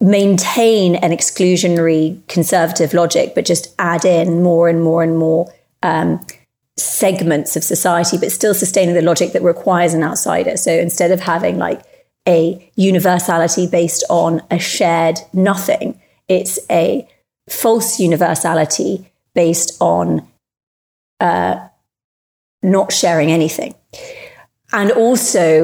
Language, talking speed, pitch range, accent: English, 120 wpm, 165-195 Hz, British